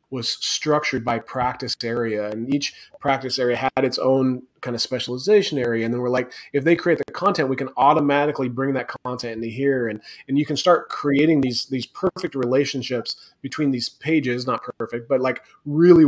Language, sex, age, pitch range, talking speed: English, male, 30-49, 125-150 Hz, 190 wpm